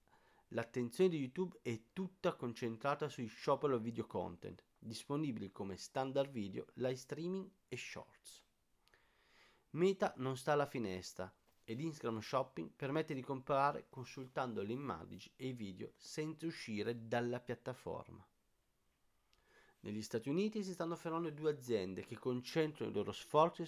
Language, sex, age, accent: Italian, male, 40-59, native